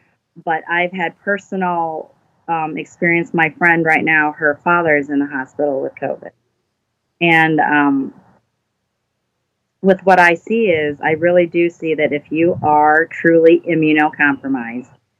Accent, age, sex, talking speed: American, 30-49, female, 140 wpm